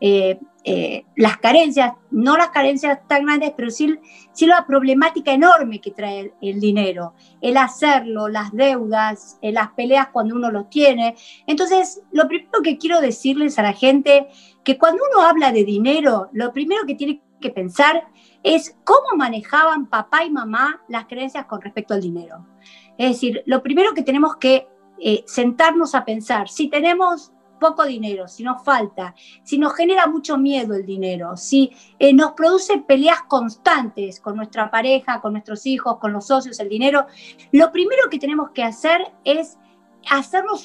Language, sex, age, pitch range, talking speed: Spanish, female, 50-69, 220-305 Hz, 165 wpm